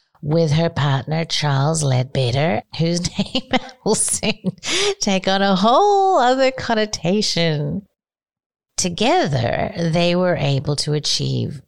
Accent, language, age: American, English, 50-69